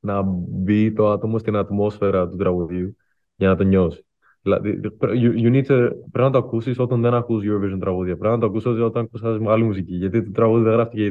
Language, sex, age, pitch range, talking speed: Greek, male, 20-39, 105-125 Hz, 190 wpm